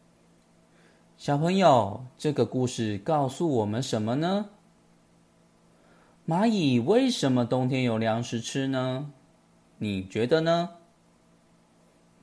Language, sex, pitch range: Chinese, male, 105-145 Hz